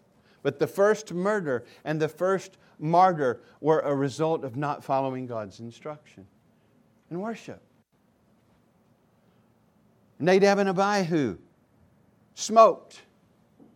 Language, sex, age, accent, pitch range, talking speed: English, male, 50-69, American, 155-195 Hz, 95 wpm